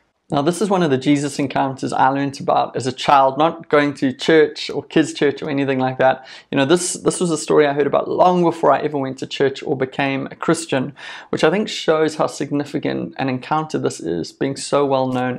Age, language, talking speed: 30-49, English, 230 wpm